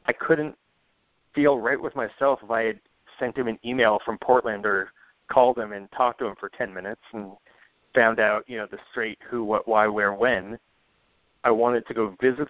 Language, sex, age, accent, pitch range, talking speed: English, male, 30-49, American, 105-125 Hz, 200 wpm